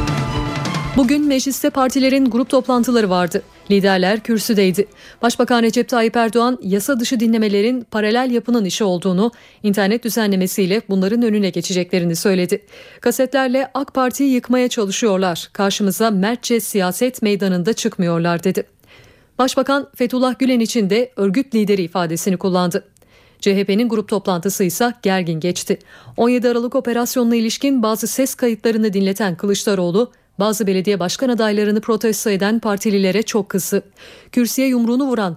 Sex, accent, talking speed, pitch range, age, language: female, native, 120 wpm, 195-245 Hz, 40-59, Turkish